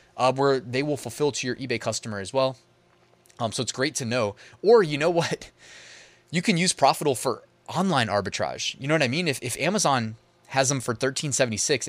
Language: English